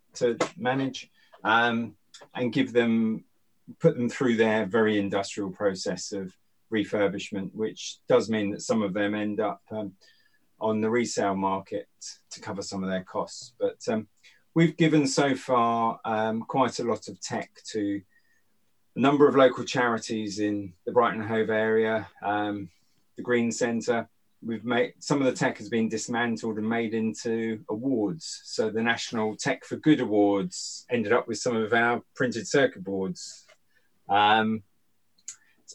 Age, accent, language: 30-49, British, English